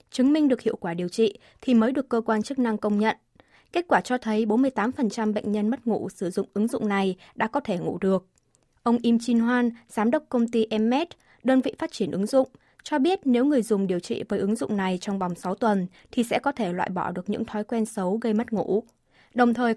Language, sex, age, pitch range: Vietnamese, female, 20-39, 205-255 Hz